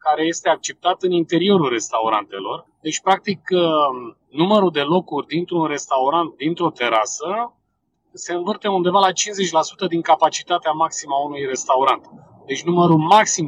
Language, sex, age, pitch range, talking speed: Romanian, male, 30-49, 155-190 Hz, 130 wpm